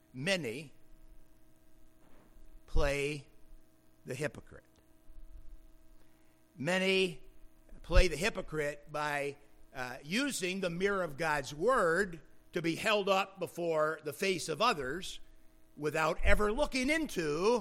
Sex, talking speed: male, 100 wpm